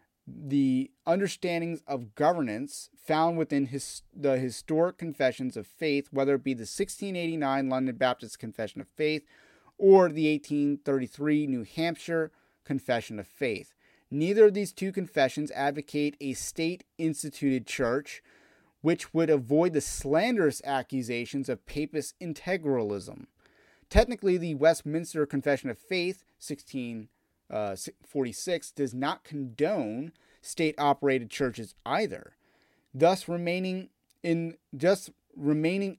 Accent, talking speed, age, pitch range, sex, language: American, 115 wpm, 30-49, 135-165 Hz, male, English